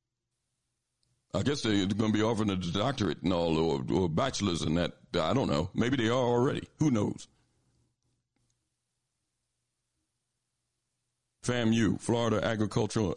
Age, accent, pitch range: 60-79, American, 90-115 Hz